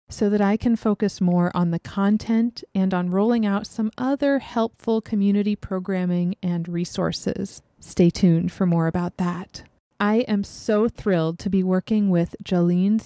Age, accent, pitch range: 30-49, American, 180-220 Hz